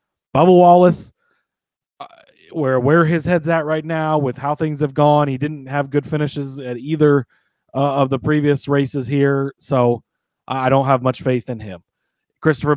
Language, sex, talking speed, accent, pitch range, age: English, male, 175 wpm, American, 130-145 Hz, 30-49